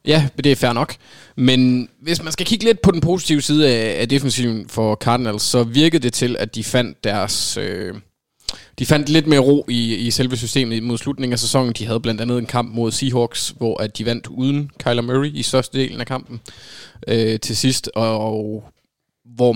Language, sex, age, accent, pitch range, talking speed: Danish, male, 20-39, native, 110-130 Hz, 205 wpm